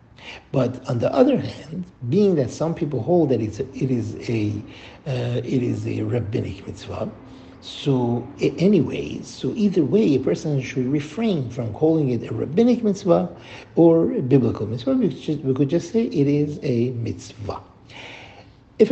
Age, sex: 60-79, male